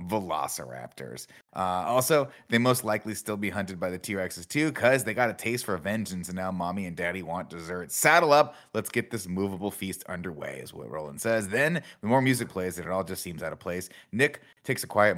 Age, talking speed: 30-49, 220 wpm